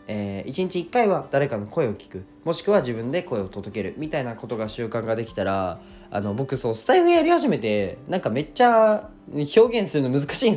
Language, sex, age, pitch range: Japanese, male, 20-39, 105-170 Hz